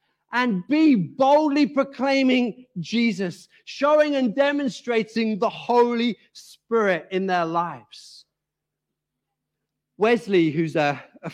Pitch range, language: 195-255 Hz, English